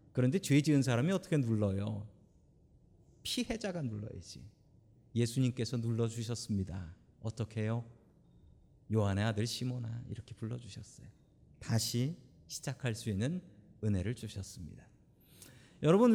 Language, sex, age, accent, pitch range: Korean, male, 40-59, native, 110-180 Hz